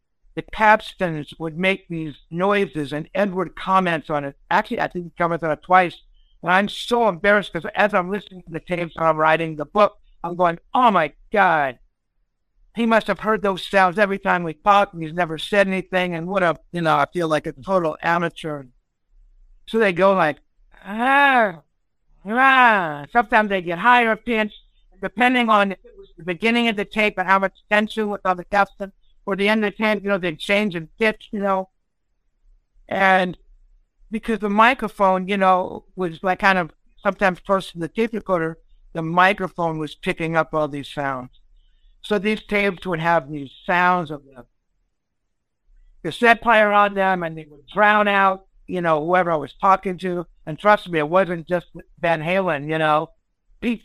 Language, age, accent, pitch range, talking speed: English, 60-79, American, 160-205 Hz, 185 wpm